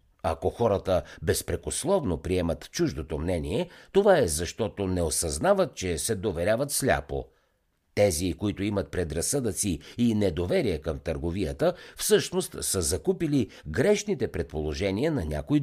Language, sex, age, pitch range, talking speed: Bulgarian, male, 50-69, 80-130 Hz, 115 wpm